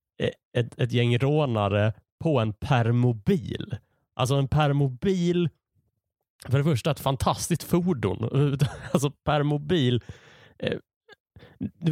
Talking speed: 95 wpm